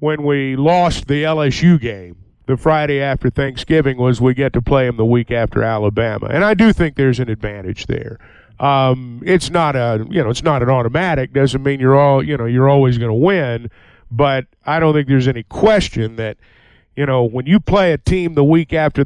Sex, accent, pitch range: male, American, 125-165 Hz